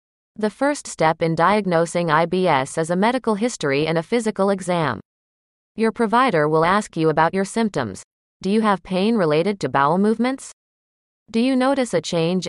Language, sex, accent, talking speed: English, female, American, 170 wpm